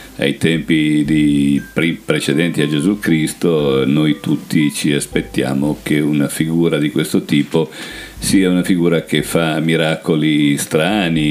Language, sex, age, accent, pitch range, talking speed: Italian, male, 50-69, native, 70-80 Hz, 135 wpm